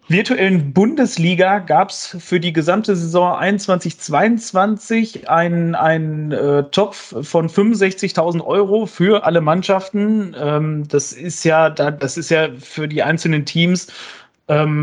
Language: German